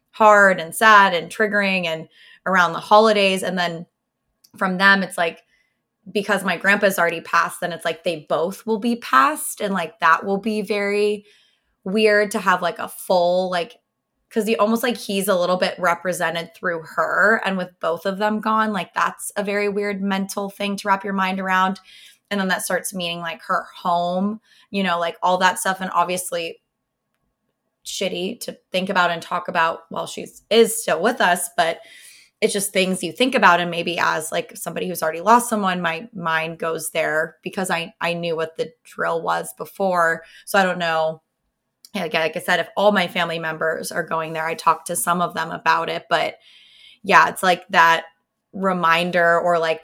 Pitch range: 170-205 Hz